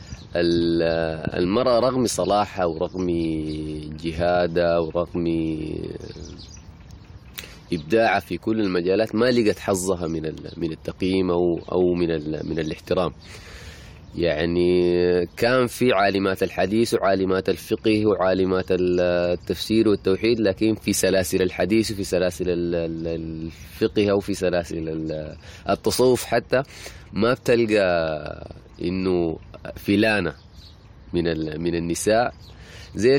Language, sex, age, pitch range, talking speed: Arabic, male, 30-49, 85-100 Hz, 90 wpm